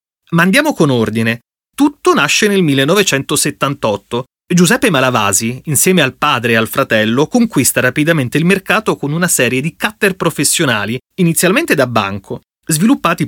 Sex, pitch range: male, 125-175 Hz